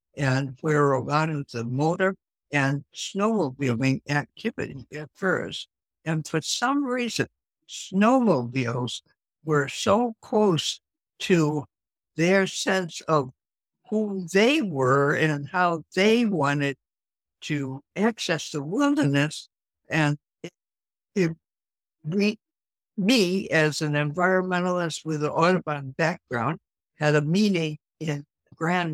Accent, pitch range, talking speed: American, 140-185 Hz, 105 wpm